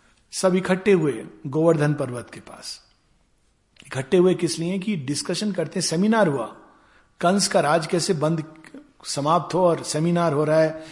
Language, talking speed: Hindi, 155 wpm